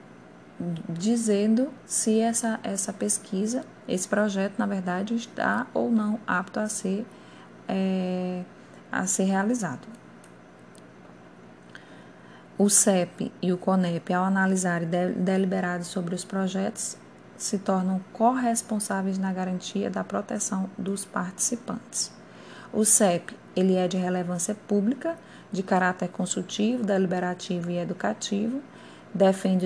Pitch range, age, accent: 180-215 Hz, 20-39, Brazilian